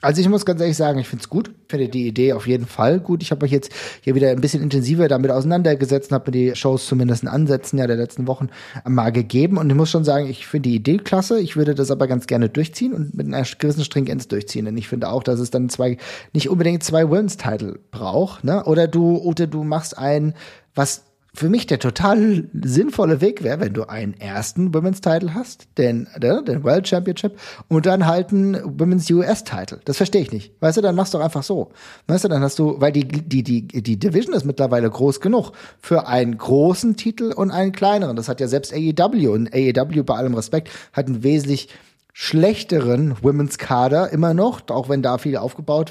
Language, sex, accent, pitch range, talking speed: German, male, German, 130-175 Hz, 215 wpm